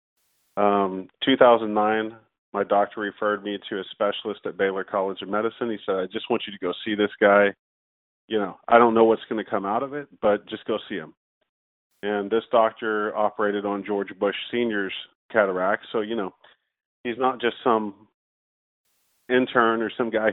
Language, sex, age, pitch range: English, male, 40-59, 100-115 Hz